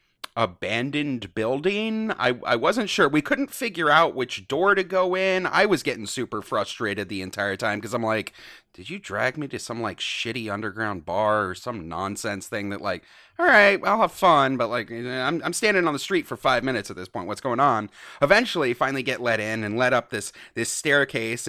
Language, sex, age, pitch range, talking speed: English, male, 30-49, 120-200 Hz, 205 wpm